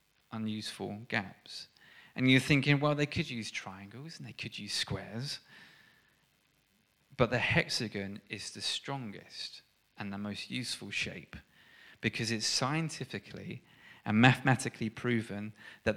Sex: male